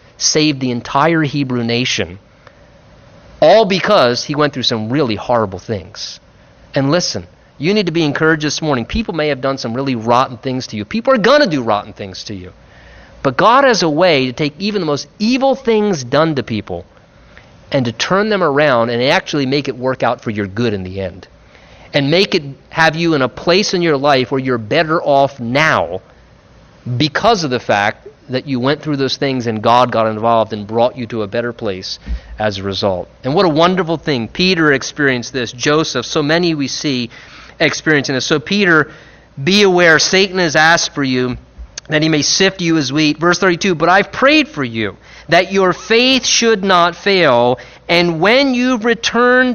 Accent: American